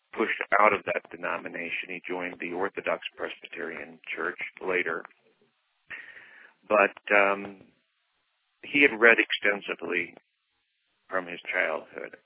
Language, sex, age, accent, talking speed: English, male, 50-69, American, 105 wpm